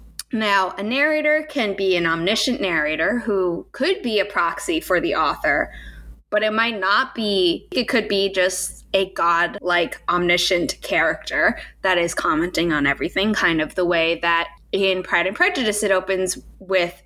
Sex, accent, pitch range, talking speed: female, American, 180-255 Hz, 160 wpm